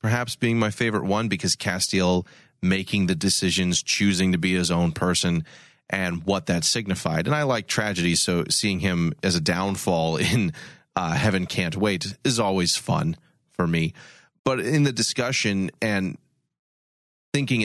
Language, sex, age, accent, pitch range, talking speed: English, male, 30-49, American, 90-110 Hz, 155 wpm